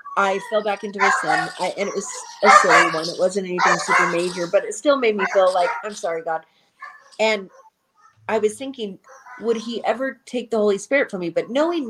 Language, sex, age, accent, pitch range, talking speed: English, female, 30-49, American, 175-215 Hz, 210 wpm